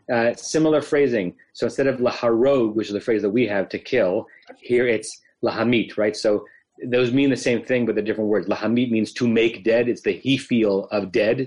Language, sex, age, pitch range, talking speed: English, male, 30-49, 105-125 Hz, 215 wpm